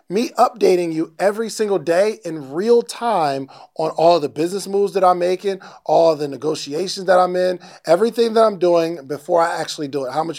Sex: male